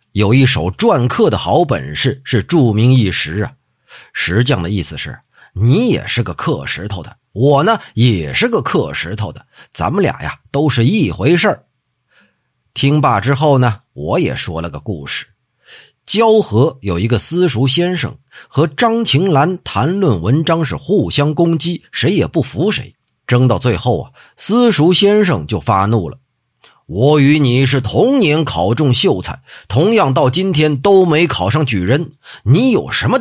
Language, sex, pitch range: Chinese, male, 110-145 Hz